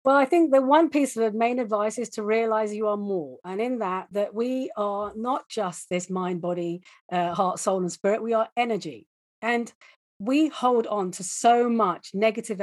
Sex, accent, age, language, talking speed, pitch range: female, British, 40-59, English, 205 wpm, 190-245 Hz